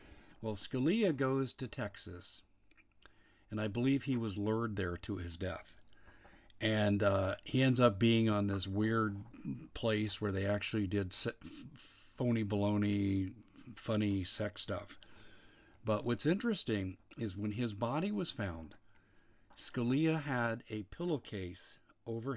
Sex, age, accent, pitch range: male, 50-69, American, 100-120 Hz